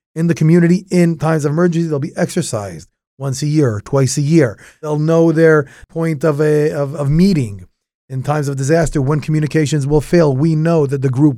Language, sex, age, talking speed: English, male, 30-49, 200 wpm